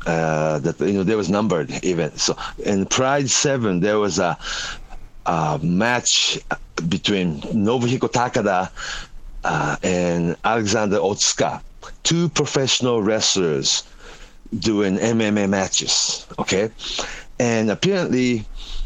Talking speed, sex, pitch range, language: 105 wpm, male, 95-130 Hz, English